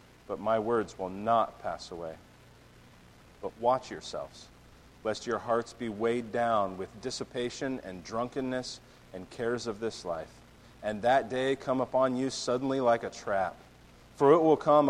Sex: male